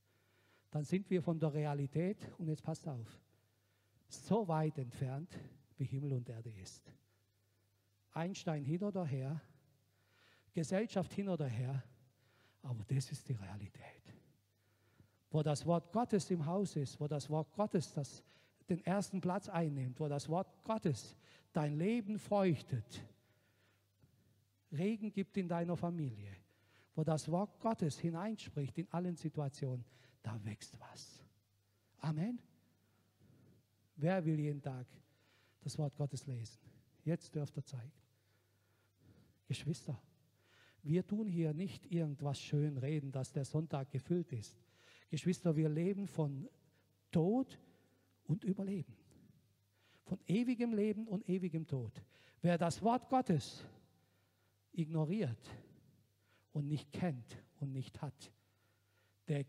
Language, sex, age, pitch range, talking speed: German, male, 50-69, 110-170 Hz, 120 wpm